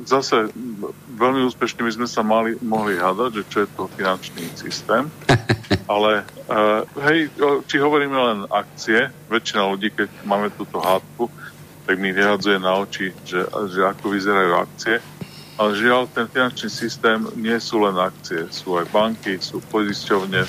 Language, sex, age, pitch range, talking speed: Slovak, male, 50-69, 100-115 Hz, 150 wpm